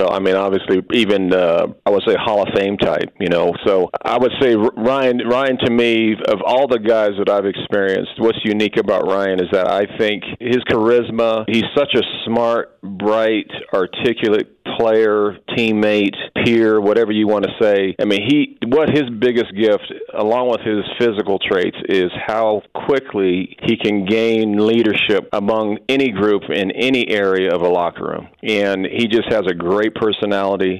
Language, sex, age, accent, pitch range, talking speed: English, male, 40-59, American, 100-115 Hz, 175 wpm